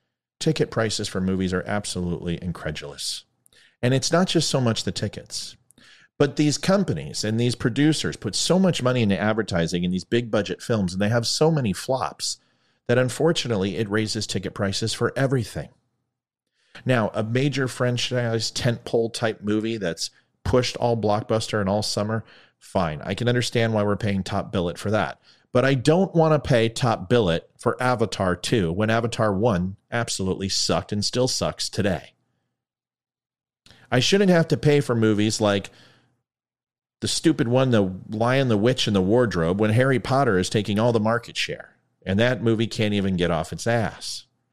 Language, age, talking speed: English, 40-59, 170 wpm